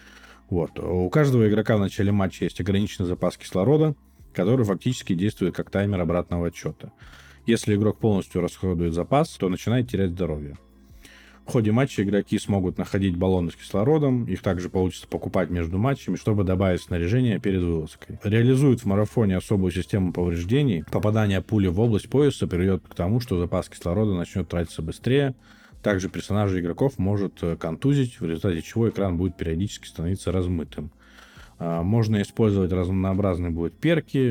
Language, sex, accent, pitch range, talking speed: Russian, male, native, 90-110 Hz, 145 wpm